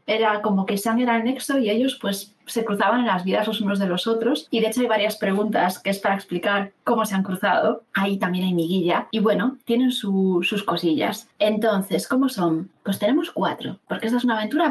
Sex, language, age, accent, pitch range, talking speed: female, Spanish, 20-39, Spanish, 185-235 Hz, 225 wpm